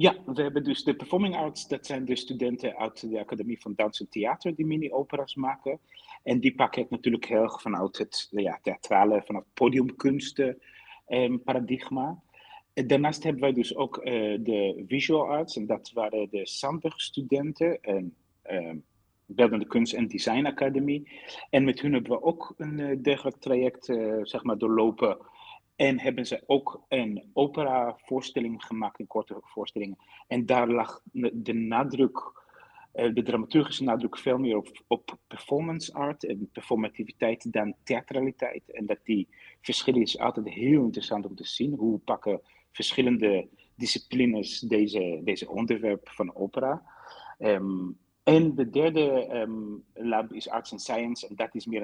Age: 30-49